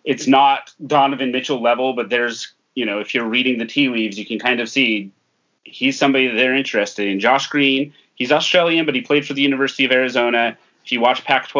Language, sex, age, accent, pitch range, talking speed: English, male, 30-49, American, 115-135 Hz, 210 wpm